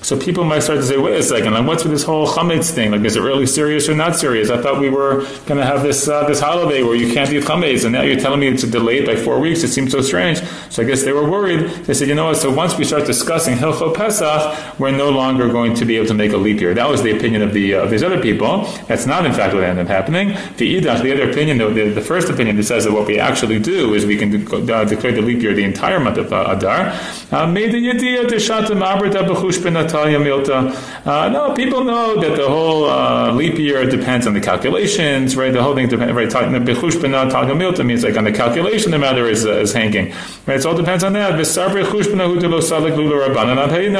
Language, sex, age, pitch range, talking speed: English, male, 30-49, 120-165 Hz, 240 wpm